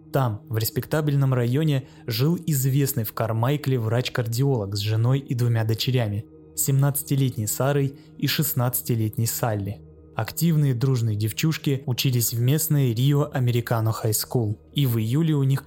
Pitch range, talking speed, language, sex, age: 115-145 Hz, 130 wpm, Russian, male, 20-39